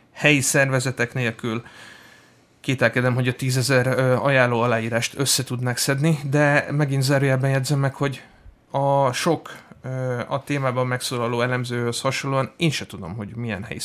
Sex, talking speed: male, 130 wpm